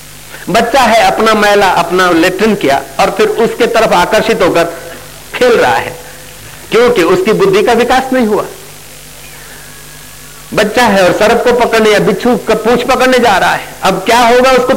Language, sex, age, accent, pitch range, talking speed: Hindi, male, 50-69, native, 195-250 Hz, 165 wpm